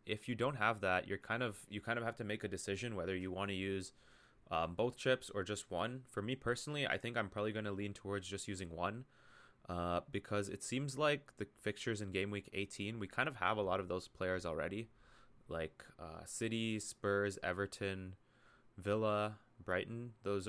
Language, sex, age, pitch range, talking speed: English, male, 20-39, 95-120 Hz, 210 wpm